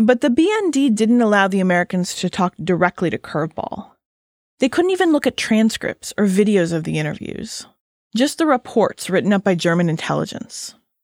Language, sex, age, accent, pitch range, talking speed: English, female, 20-39, American, 175-230 Hz, 170 wpm